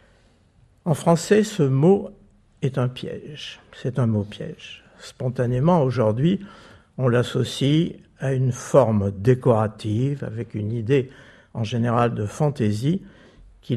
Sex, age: male, 60-79